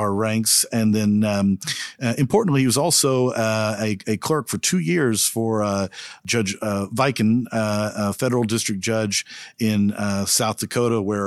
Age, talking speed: 50-69, 170 wpm